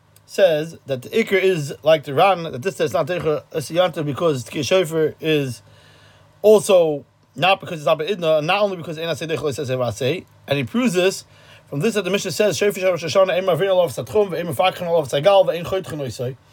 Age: 30-49